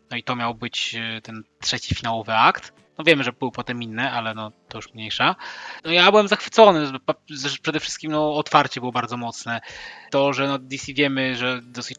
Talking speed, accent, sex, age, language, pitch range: 200 wpm, native, male, 20-39, Polish, 120-145 Hz